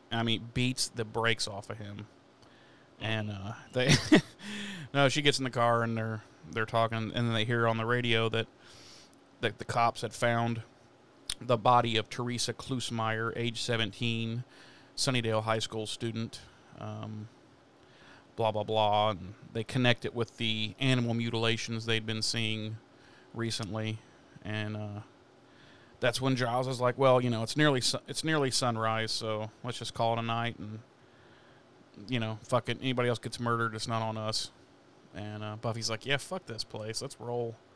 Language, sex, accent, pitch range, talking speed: English, male, American, 115-135 Hz, 170 wpm